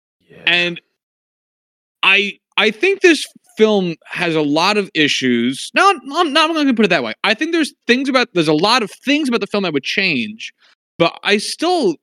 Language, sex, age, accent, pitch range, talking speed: English, male, 30-49, American, 130-200 Hz, 195 wpm